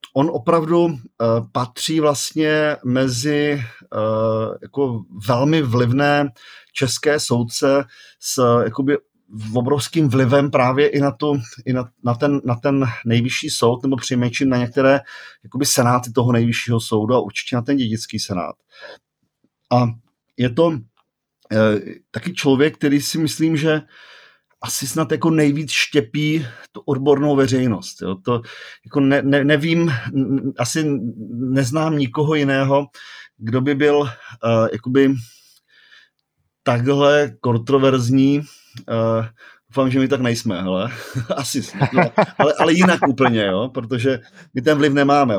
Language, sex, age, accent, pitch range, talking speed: Czech, male, 40-59, native, 120-145 Hz, 130 wpm